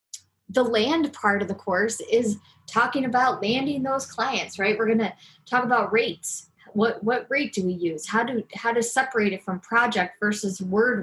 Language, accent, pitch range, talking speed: English, American, 190-240 Hz, 190 wpm